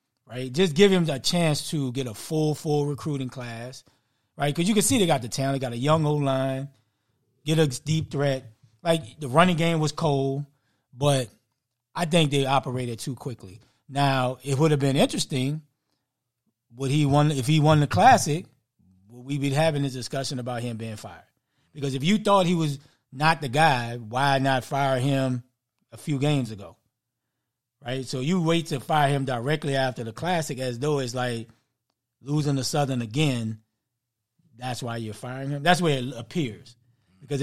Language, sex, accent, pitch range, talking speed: English, male, American, 125-155 Hz, 180 wpm